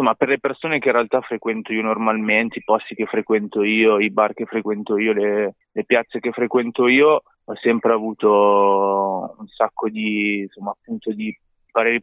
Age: 20-39